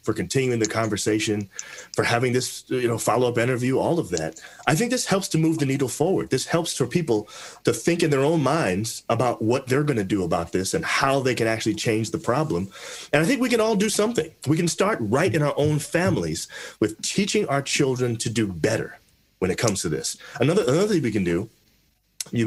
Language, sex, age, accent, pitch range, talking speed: English, male, 30-49, American, 105-150 Hz, 225 wpm